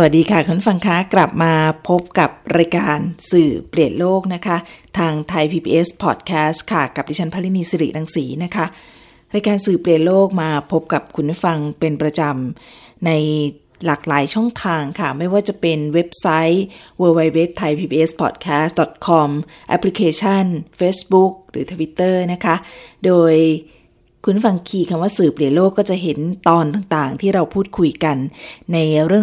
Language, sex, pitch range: Thai, female, 155-185 Hz